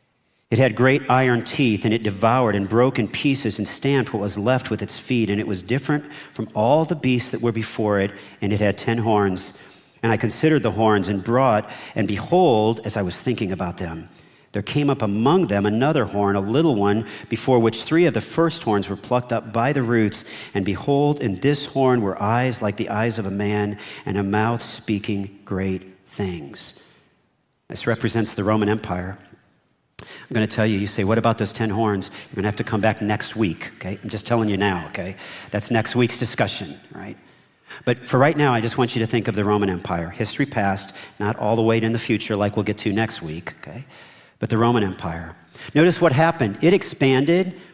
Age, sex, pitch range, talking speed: 50-69, male, 105-130 Hz, 215 wpm